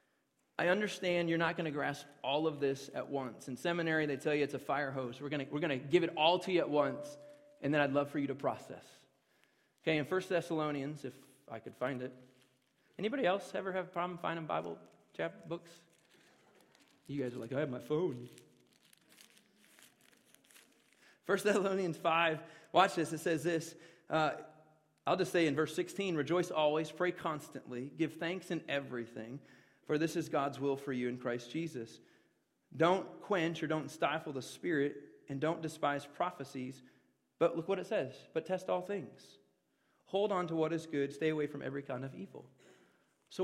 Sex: male